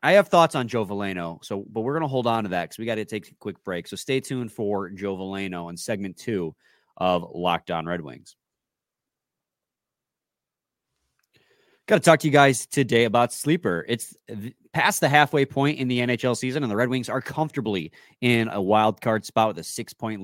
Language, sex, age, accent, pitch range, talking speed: English, male, 30-49, American, 110-150 Hz, 200 wpm